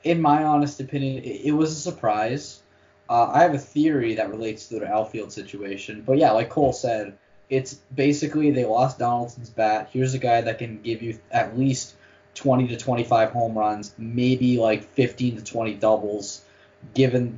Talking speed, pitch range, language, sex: 175 wpm, 105-130 Hz, English, male